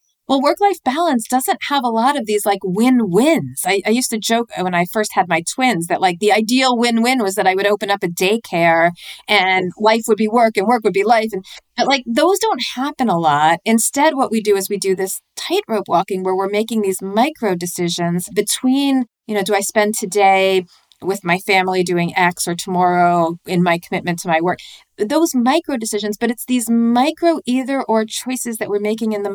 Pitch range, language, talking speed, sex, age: 190-240 Hz, English, 210 wpm, female, 40-59